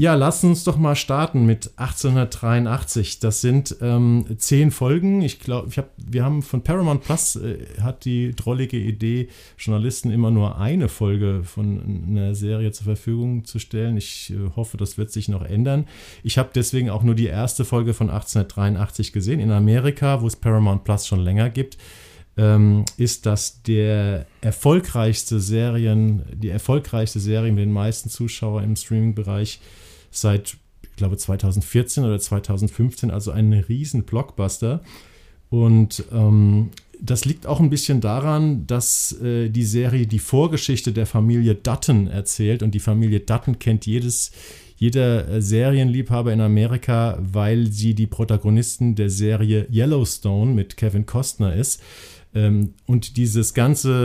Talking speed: 150 wpm